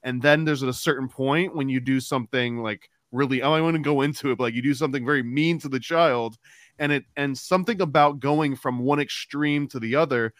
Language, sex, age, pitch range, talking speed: English, male, 20-39, 120-145 Hz, 240 wpm